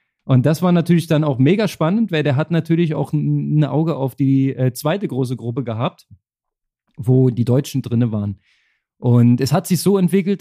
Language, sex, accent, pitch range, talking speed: German, male, German, 135-170 Hz, 185 wpm